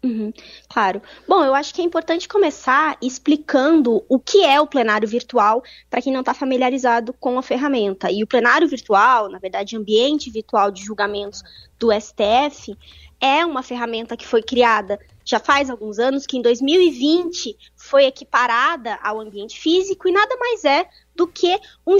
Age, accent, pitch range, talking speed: 20-39, Brazilian, 235-340 Hz, 165 wpm